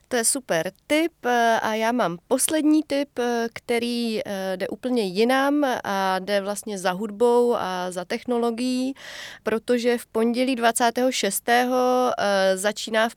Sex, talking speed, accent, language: female, 125 wpm, native, Czech